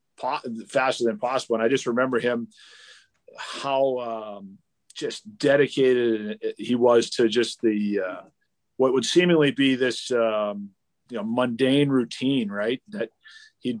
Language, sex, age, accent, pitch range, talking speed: English, male, 40-59, American, 110-130 Hz, 135 wpm